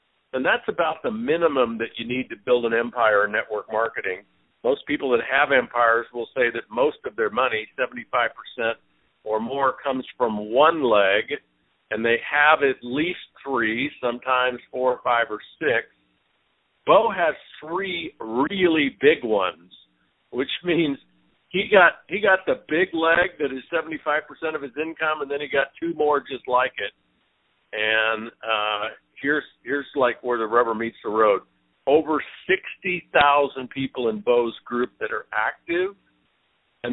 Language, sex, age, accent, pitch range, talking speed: English, male, 50-69, American, 115-150 Hz, 160 wpm